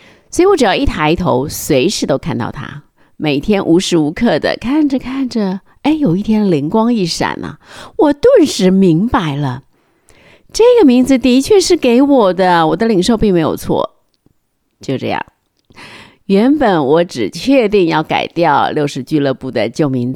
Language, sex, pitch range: Chinese, female, 155-250 Hz